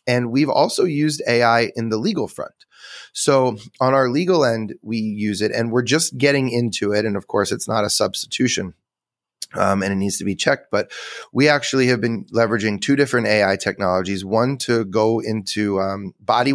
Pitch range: 105-125 Hz